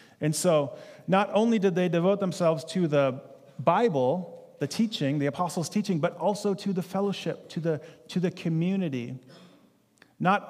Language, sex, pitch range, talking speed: English, male, 150-185 Hz, 155 wpm